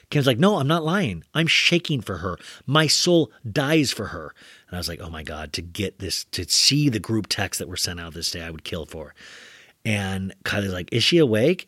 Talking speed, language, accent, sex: 235 wpm, English, American, male